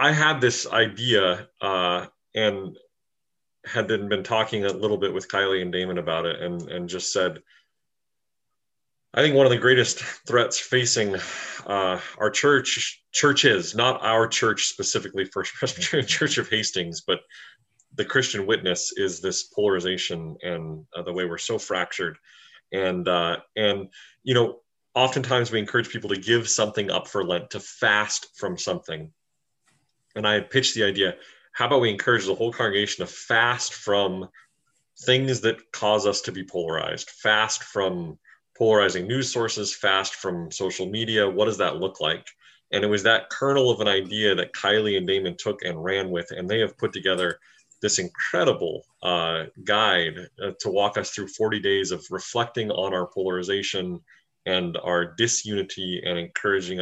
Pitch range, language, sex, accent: 90-115 Hz, English, male, American